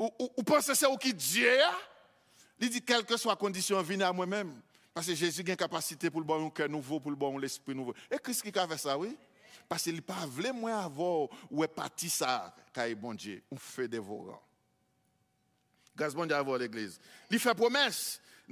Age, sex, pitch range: 50-69, male, 195-270 Hz